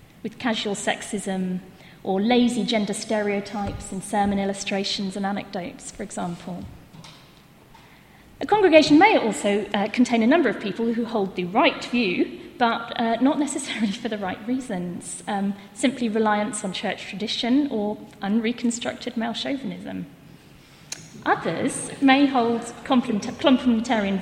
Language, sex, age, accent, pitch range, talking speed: English, female, 40-59, British, 200-265 Hz, 125 wpm